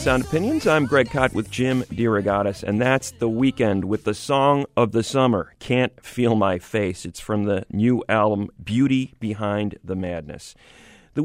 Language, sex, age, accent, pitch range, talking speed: English, male, 40-59, American, 100-125 Hz, 170 wpm